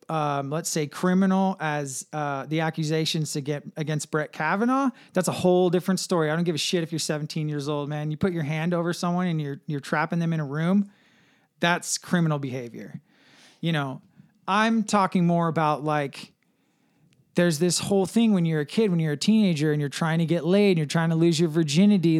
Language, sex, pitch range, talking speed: English, male, 160-200 Hz, 210 wpm